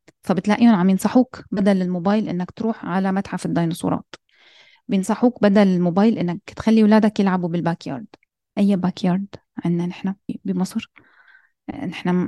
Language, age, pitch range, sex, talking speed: Arabic, 20-39, 185-235 Hz, female, 115 wpm